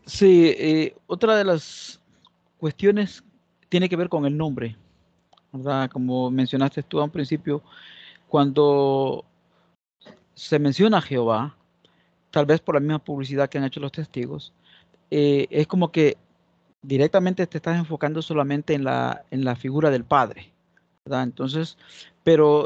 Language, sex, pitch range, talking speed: Spanish, male, 130-155 Hz, 145 wpm